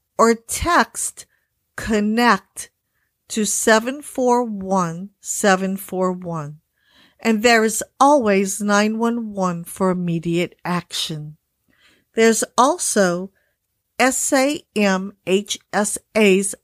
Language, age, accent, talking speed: English, 50-69, American, 60 wpm